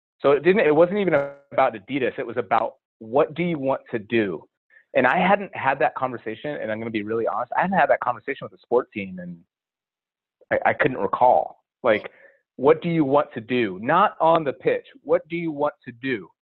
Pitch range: 120-155 Hz